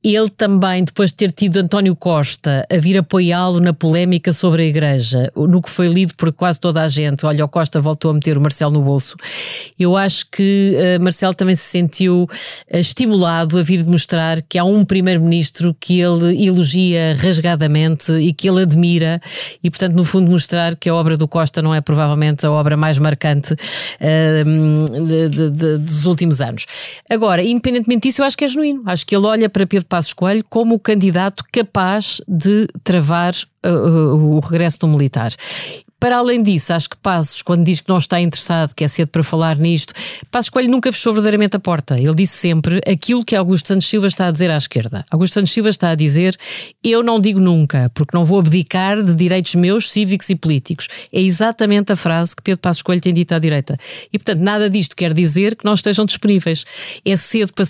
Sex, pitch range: female, 160-195 Hz